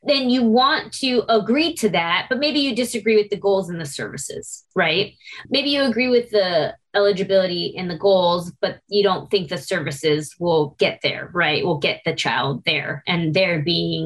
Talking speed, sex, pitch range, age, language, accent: 190 wpm, female, 185-245 Hz, 20-39, English, American